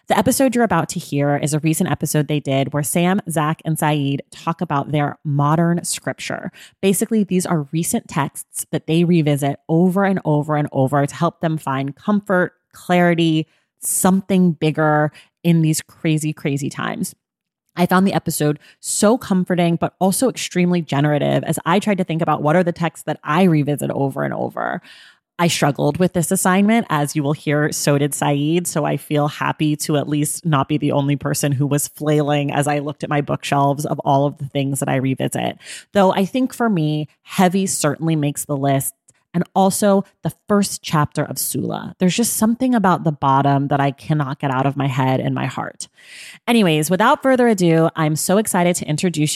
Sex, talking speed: female, 195 wpm